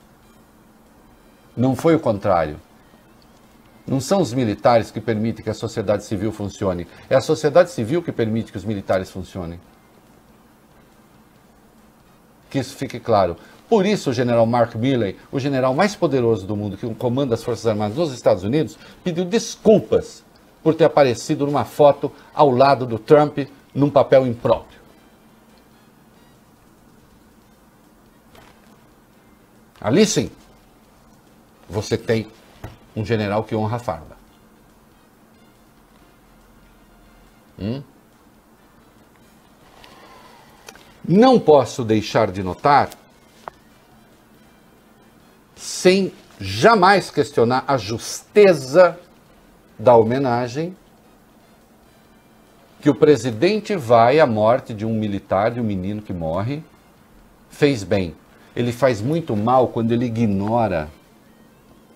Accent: Brazilian